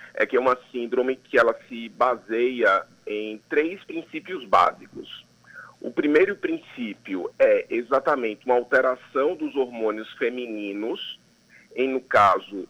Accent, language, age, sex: Brazilian, Portuguese, 40-59, male